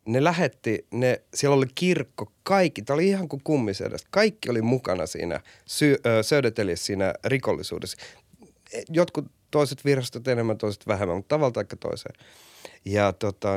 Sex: male